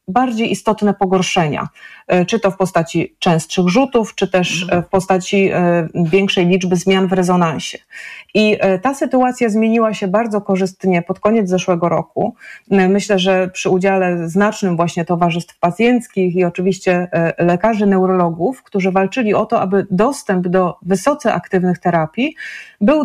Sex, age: female, 30-49